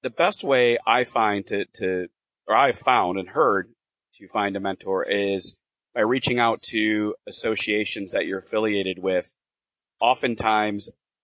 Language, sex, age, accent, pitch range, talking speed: English, male, 30-49, American, 95-115 Hz, 145 wpm